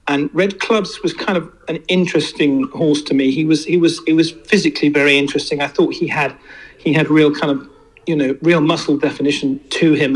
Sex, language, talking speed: male, English, 215 wpm